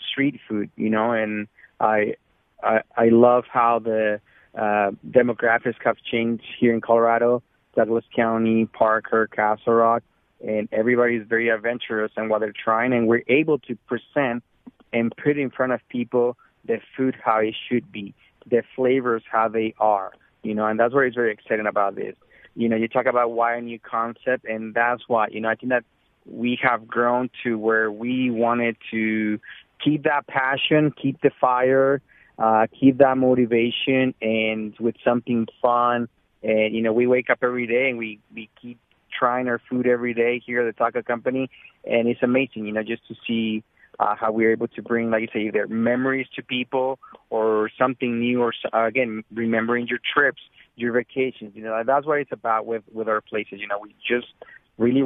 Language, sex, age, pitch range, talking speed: English, male, 30-49, 110-125 Hz, 185 wpm